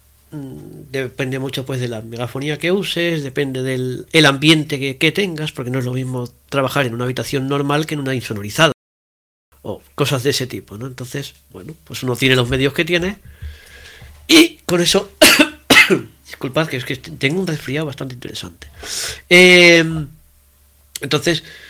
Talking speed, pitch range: 160 wpm, 110-160 Hz